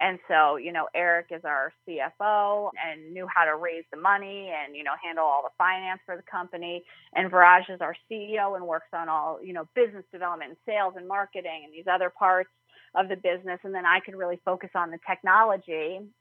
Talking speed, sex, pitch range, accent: 215 wpm, female, 165-200 Hz, American